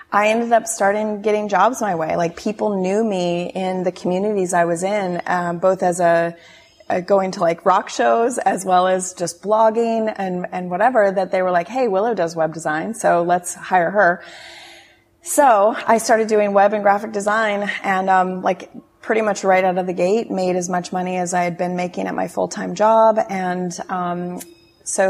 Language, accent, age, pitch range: English, American, 30-49, 175-205 Hz